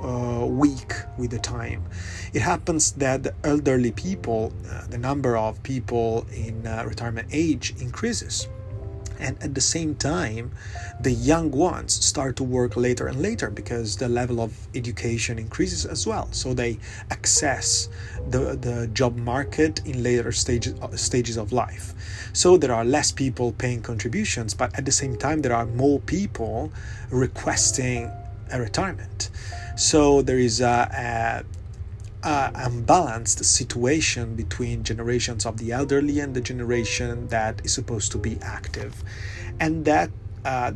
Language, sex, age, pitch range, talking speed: Italian, male, 30-49, 100-125 Hz, 145 wpm